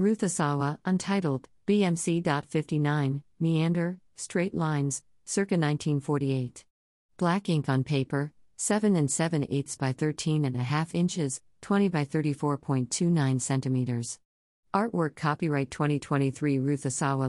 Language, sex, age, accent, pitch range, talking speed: English, female, 50-69, American, 125-160 Hz, 100 wpm